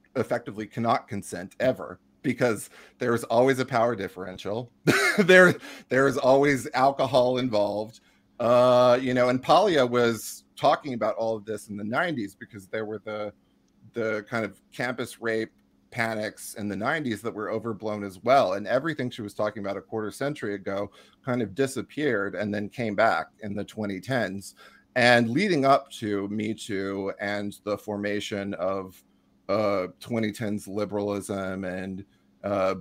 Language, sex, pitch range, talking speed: English, male, 100-115 Hz, 155 wpm